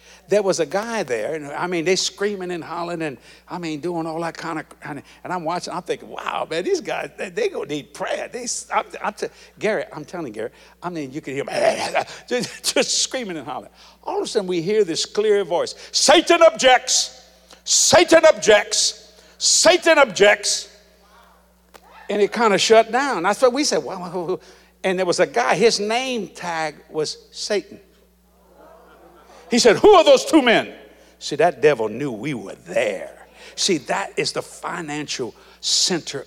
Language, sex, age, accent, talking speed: English, male, 60-79, American, 185 wpm